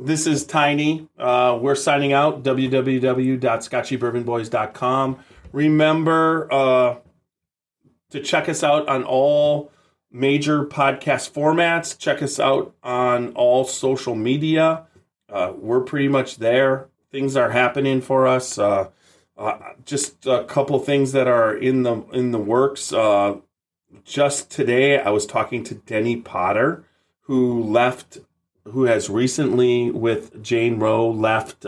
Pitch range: 120-140 Hz